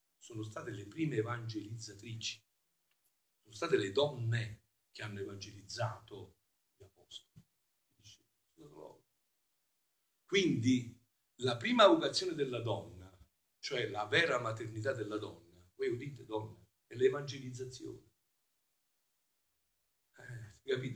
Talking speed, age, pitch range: 90 wpm, 50-69, 105-140 Hz